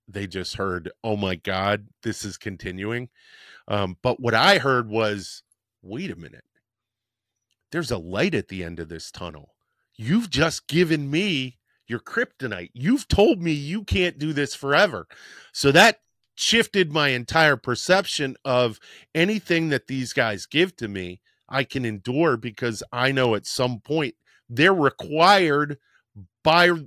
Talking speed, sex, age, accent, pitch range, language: 150 wpm, male, 40-59, American, 105-140 Hz, English